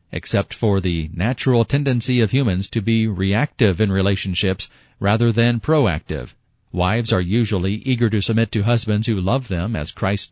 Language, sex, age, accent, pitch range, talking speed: English, male, 50-69, American, 100-125 Hz, 165 wpm